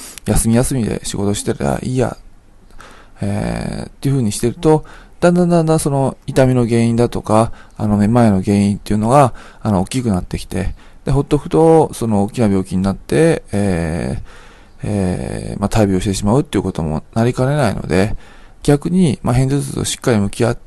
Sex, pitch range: male, 100-140 Hz